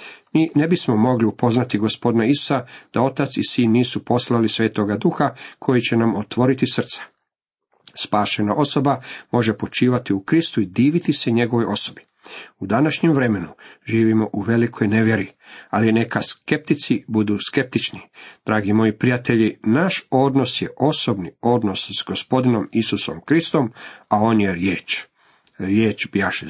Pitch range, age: 105-135 Hz, 50-69